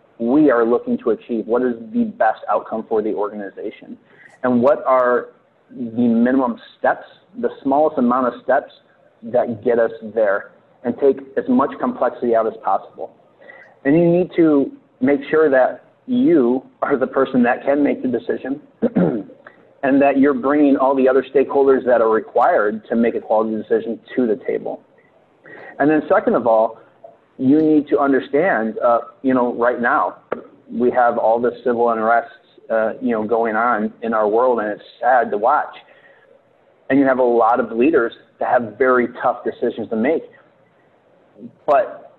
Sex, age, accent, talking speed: male, 30-49, American, 170 wpm